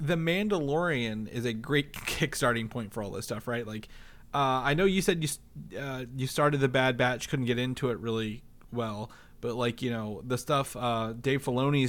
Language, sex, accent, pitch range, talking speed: English, male, American, 115-135 Hz, 200 wpm